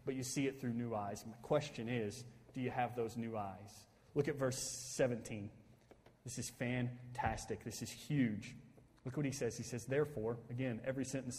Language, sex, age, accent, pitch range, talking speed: English, male, 30-49, American, 130-200 Hz, 190 wpm